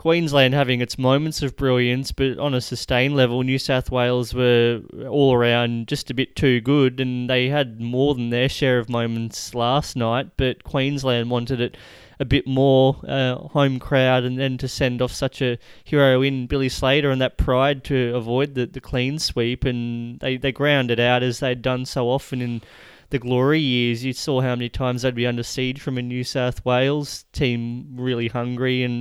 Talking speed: 200 wpm